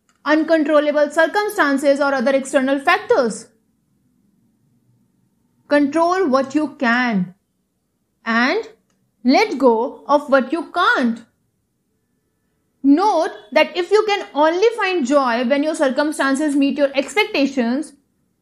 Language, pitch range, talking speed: English, 245-310 Hz, 100 wpm